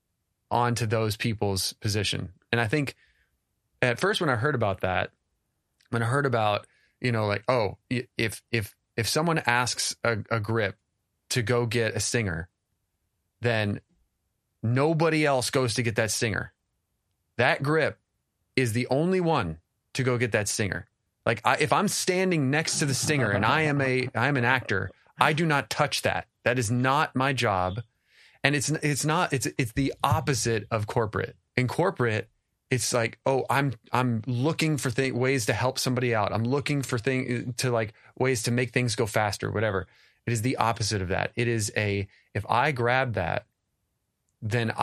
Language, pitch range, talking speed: English, 110-130 Hz, 180 wpm